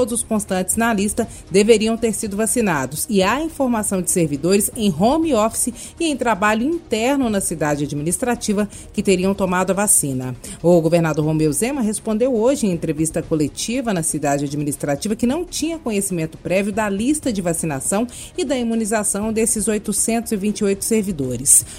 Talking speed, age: 155 wpm, 30-49